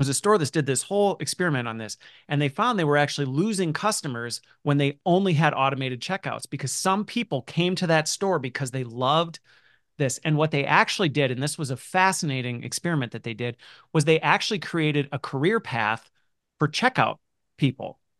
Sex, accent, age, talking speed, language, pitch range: male, American, 30-49, 195 wpm, English, 140-180 Hz